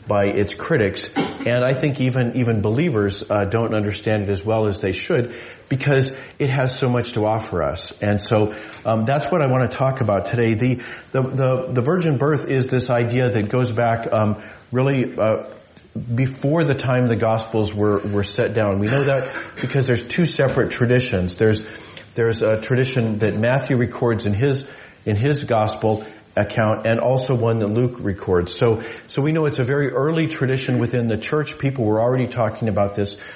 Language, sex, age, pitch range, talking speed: English, male, 40-59, 105-130 Hz, 190 wpm